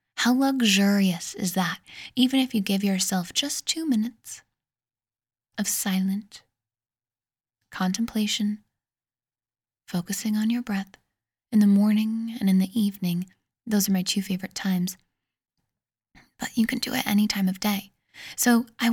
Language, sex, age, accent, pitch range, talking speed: English, female, 10-29, American, 185-225 Hz, 135 wpm